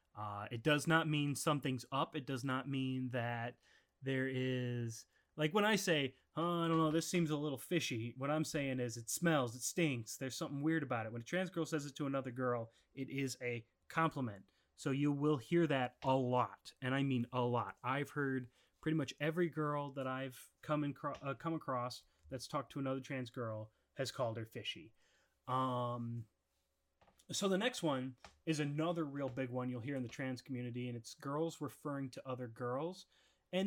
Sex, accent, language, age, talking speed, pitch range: male, American, English, 30-49, 205 wpm, 120-160 Hz